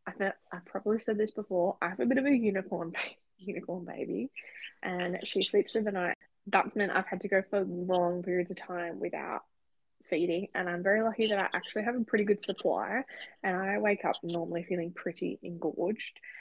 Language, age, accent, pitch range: English, 10-29, Australian, 175-205 Hz